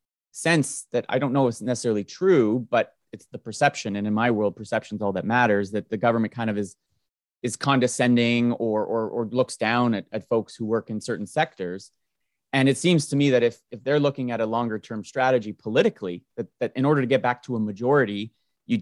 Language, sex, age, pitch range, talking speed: English, male, 30-49, 105-125 Hz, 220 wpm